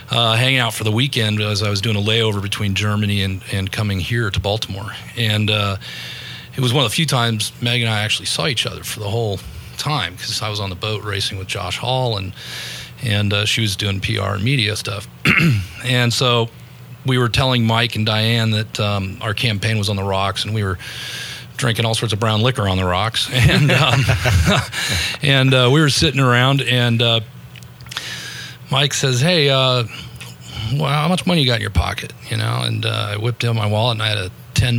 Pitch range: 105-130 Hz